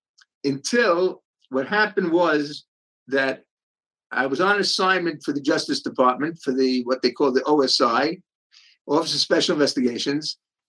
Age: 50-69